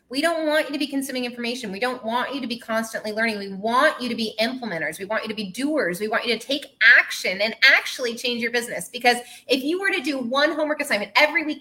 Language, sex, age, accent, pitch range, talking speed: English, female, 20-39, American, 210-275 Hz, 260 wpm